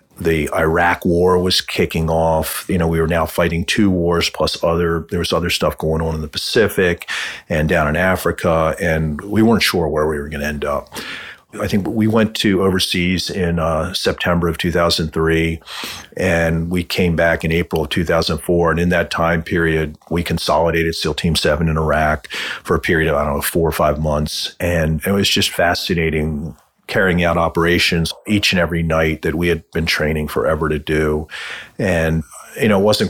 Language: English